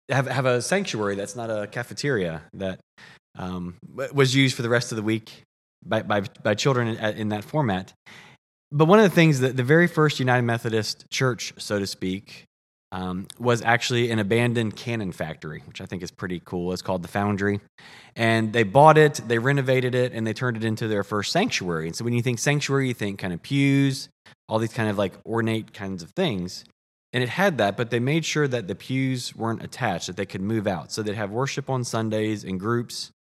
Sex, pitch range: male, 100-125 Hz